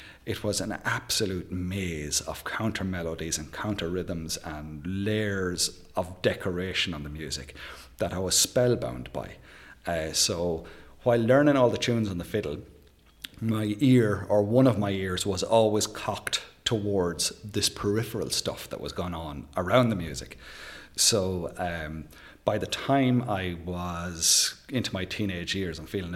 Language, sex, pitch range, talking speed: English, male, 80-105 Hz, 155 wpm